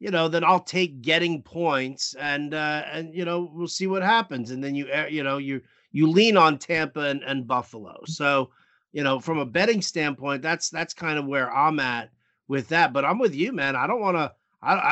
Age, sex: 40-59, male